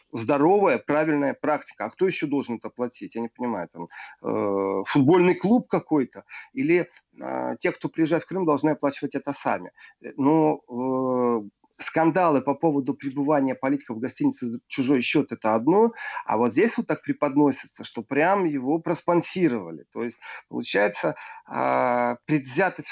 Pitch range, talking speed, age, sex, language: 125-170 Hz, 140 wpm, 40-59, male, Russian